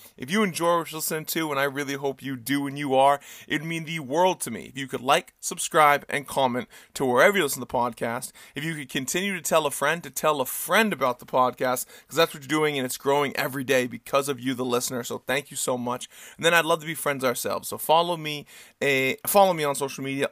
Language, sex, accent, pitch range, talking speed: English, male, American, 135-165 Hz, 260 wpm